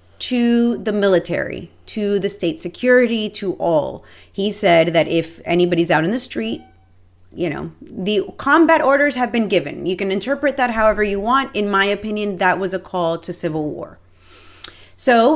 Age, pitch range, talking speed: 30-49, 165-220 Hz, 170 wpm